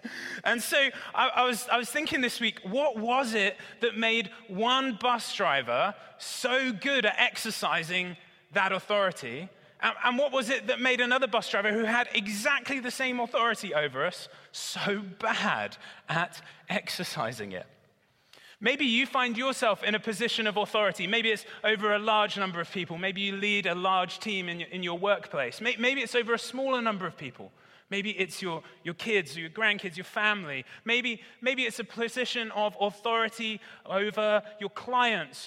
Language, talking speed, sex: English, 175 wpm, male